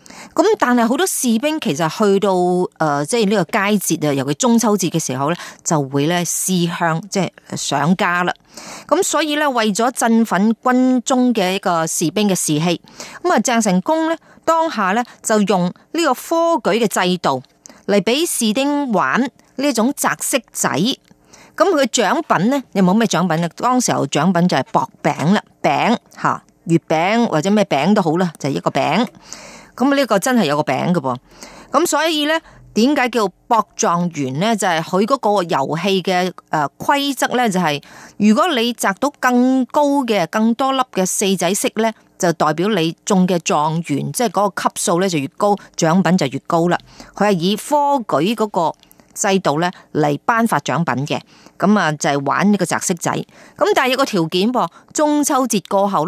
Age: 30-49